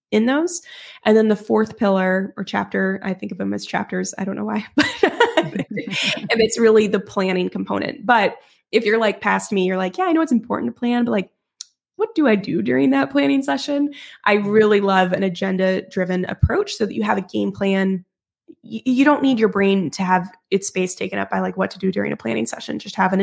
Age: 20-39